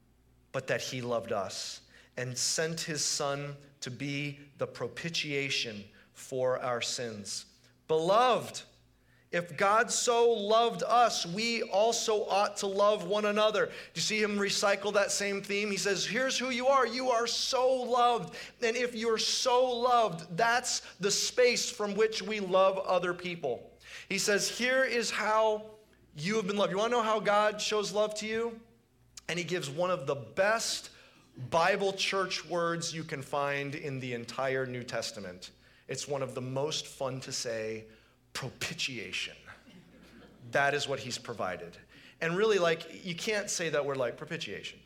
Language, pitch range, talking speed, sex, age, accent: English, 140-220 Hz, 160 wpm, male, 30-49, American